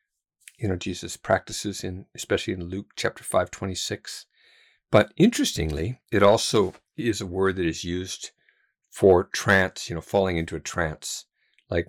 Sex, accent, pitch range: male, American, 80-100 Hz